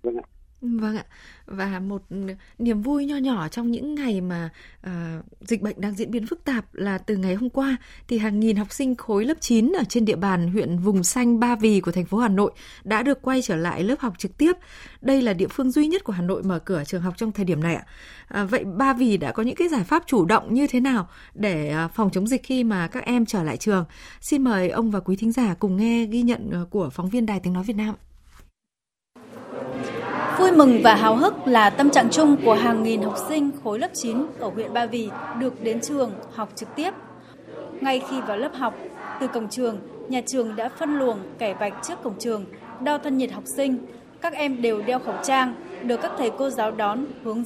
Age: 20-39